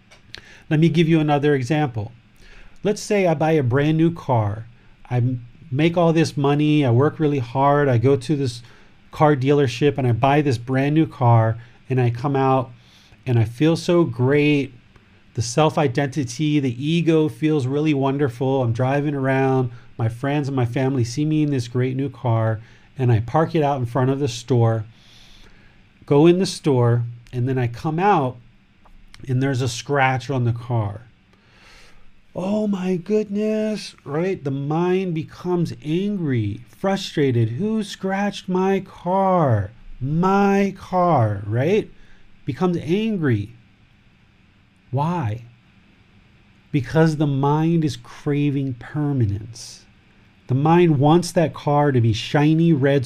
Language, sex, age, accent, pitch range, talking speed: English, male, 40-59, American, 115-155 Hz, 145 wpm